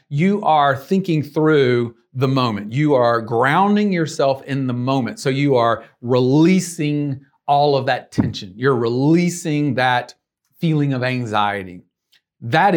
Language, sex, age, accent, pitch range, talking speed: English, male, 40-59, American, 125-170 Hz, 130 wpm